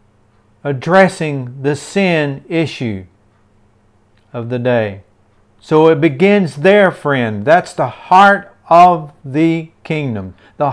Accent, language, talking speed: American, English, 105 wpm